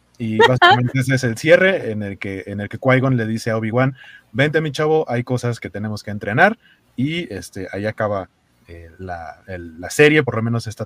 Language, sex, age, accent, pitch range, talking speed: Spanish, male, 30-49, Mexican, 110-145 Hz, 215 wpm